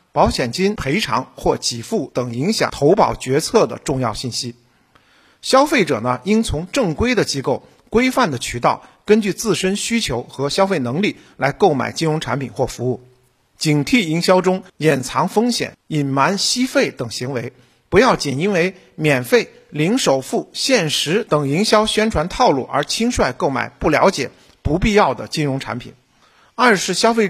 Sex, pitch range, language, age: male, 135-205 Hz, Chinese, 50-69